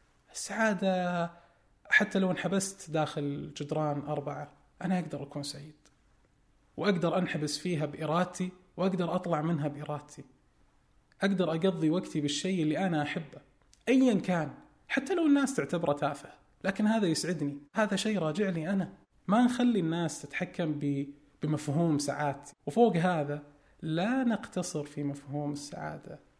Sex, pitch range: male, 145-190 Hz